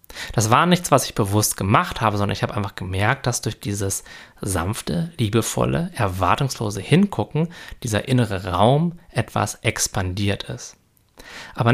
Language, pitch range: German, 100-135 Hz